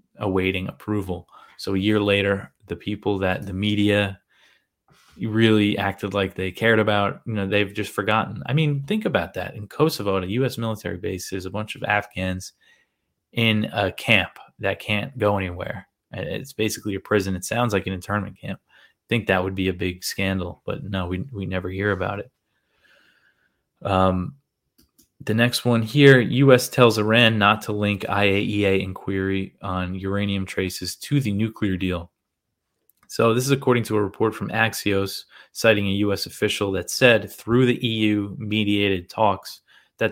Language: English